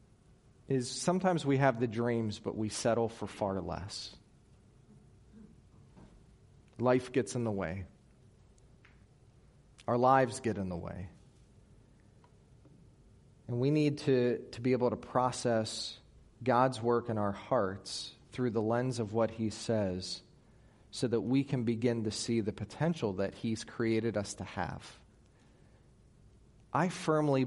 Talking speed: 135 wpm